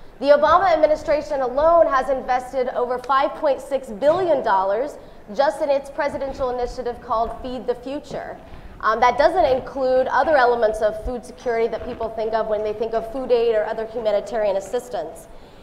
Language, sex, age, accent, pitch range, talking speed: English, female, 20-39, American, 230-290 Hz, 155 wpm